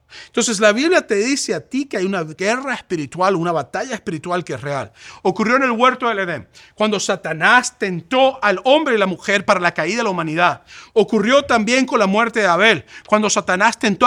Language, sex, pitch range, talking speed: English, male, 195-255 Hz, 205 wpm